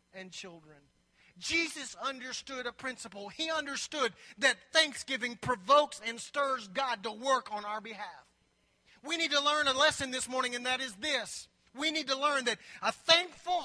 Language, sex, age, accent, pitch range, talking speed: English, male, 40-59, American, 230-285 Hz, 165 wpm